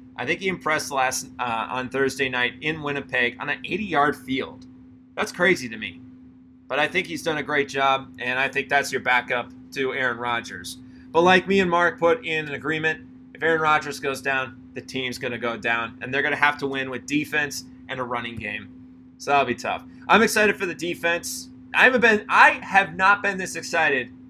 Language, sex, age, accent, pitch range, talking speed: English, male, 30-49, American, 130-160 Hz, 215 wpm